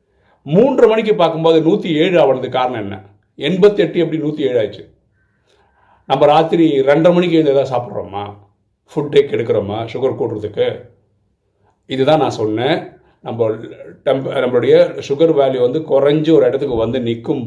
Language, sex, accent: Tamil, male, native